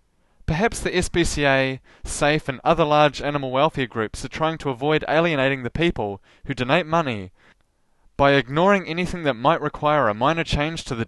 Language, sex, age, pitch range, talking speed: English, male, 20-39, 130-170 Hz, 170 wpm